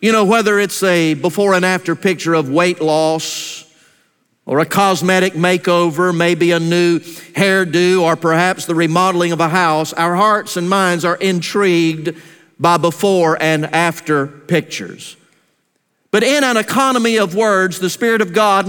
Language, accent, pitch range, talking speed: English, American, 175-230 Hz, 155 wpm